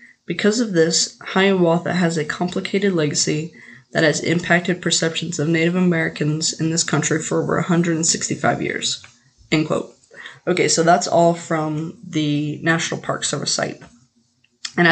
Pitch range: 150-175 Hz